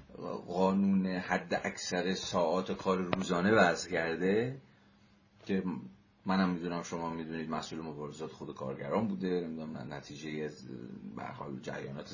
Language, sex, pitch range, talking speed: Persian, male, 85-105 Hz, 105 wpm